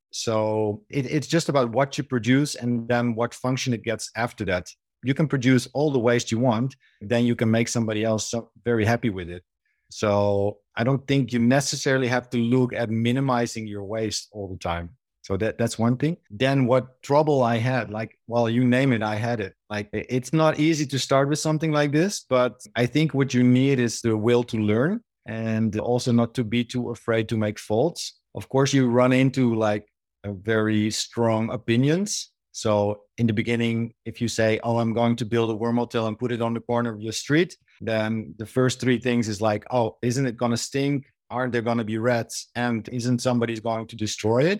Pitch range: 110-130 Hz